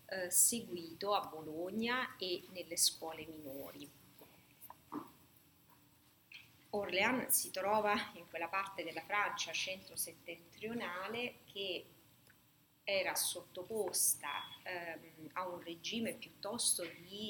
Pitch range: 165-195 Hz